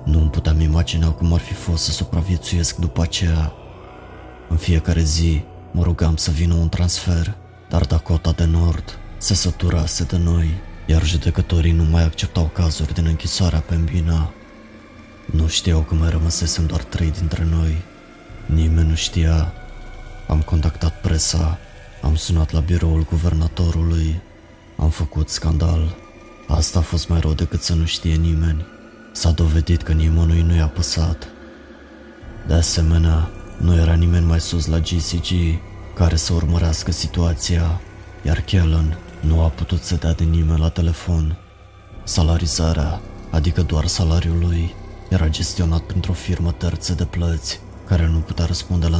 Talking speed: 150 wpm